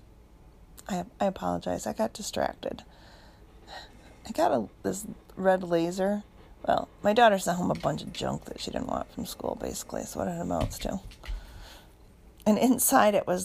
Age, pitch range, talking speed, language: 40-59, 190-235 Hz, 165 wpm, English